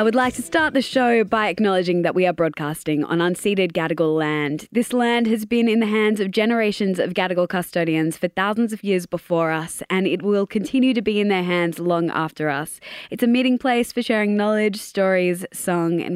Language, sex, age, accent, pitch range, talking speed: English, female, 20-39, Australian, 175-240 Hz, 210 wpm